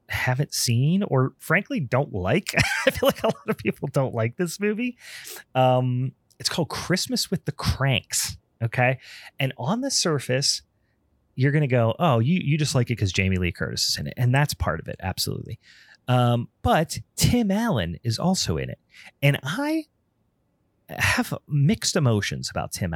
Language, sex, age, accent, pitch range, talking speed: English, male, 30-49, American, 110-145 Hz, 175 wpm